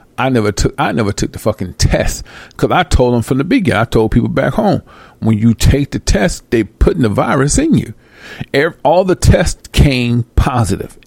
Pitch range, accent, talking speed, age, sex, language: 105-130 Hz, American, 205 wpm, 40-59, male, English